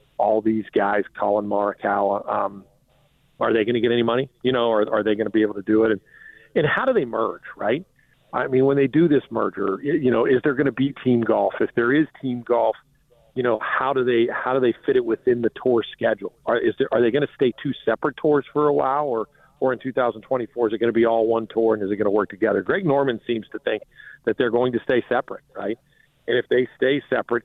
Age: 50-69